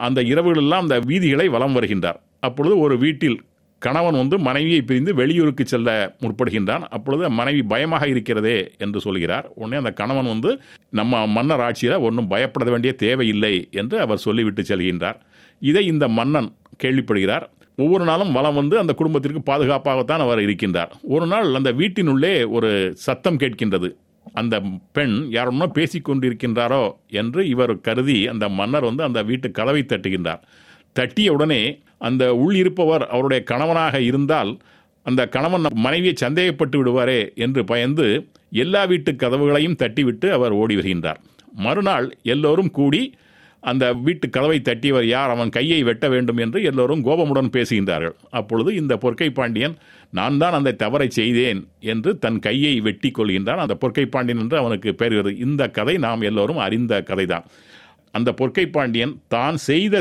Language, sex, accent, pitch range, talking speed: Tamil, male, native, 115-150 Hz, 140 wpm